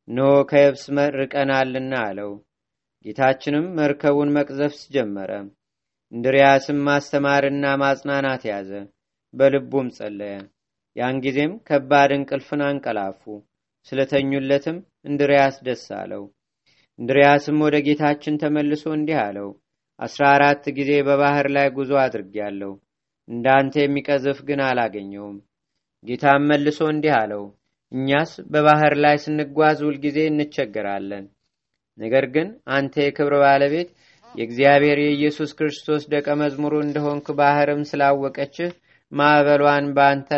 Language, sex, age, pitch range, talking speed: Amharic, male, 30-49, 130-150 Hz, 90 wpm